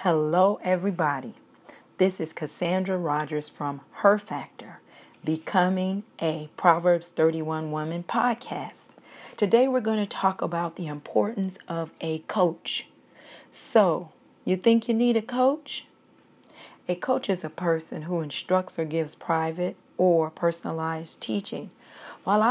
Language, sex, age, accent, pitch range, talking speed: English, female, 40-59, American, 160-195 Hz, 125 wpm